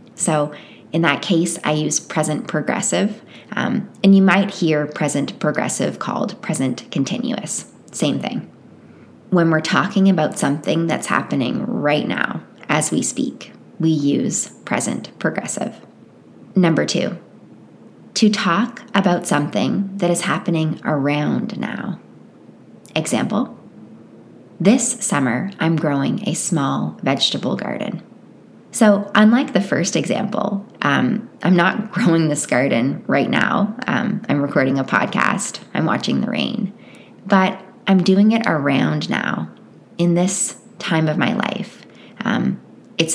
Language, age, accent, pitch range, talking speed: English, 20-39, American, 165-225 Hz, 130 wpm